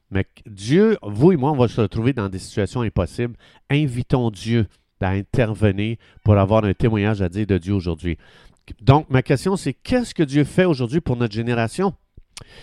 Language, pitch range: French, 105-140 Hz